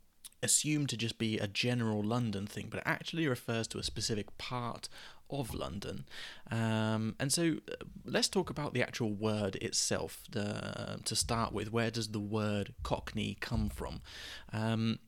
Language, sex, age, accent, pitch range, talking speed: English, male, 20-39, British, 105-125 Hz, 160 wpm